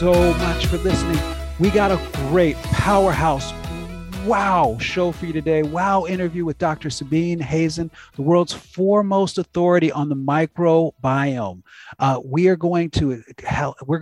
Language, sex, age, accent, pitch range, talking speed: English, male, 40-59, American, 125-165 Hz, 140 wpm